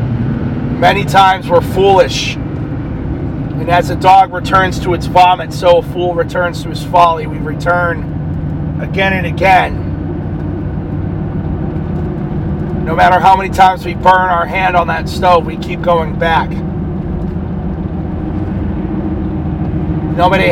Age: 30-49